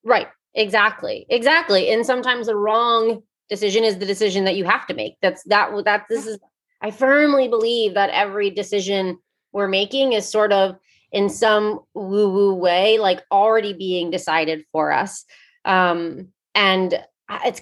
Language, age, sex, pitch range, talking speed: English, 20-39, female, 185-225 Hz, 155 wpm